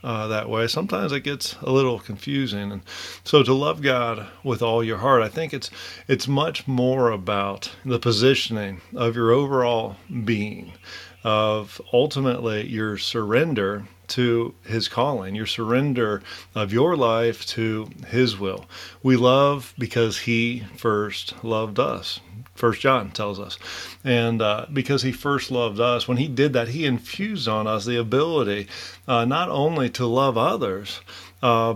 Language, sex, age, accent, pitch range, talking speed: English, male, 40-59, American, 105-130 Hz, 155 wpm